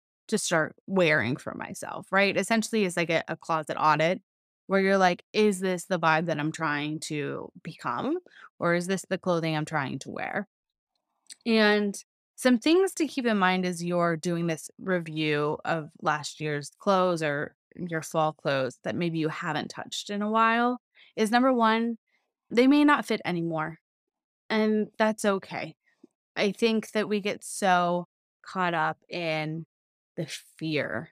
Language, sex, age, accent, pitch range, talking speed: English, female, 20-39, American, 160-210 Hz, 160 wpm